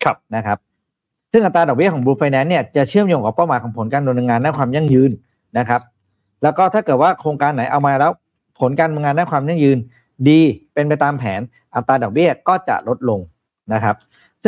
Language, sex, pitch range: Thai, male, 115-150 Hz